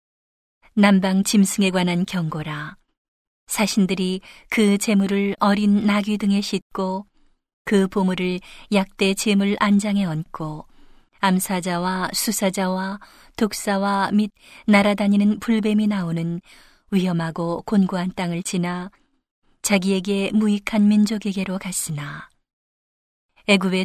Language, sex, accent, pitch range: Korean, female, native, 185-210 Hz